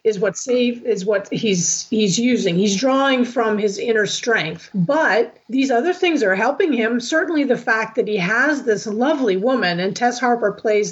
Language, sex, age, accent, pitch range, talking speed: English, female, 40-59, American, 210-290 Hz, 180 wpm